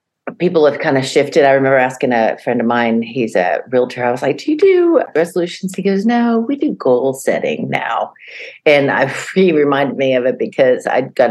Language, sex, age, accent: English, female, 50-69, American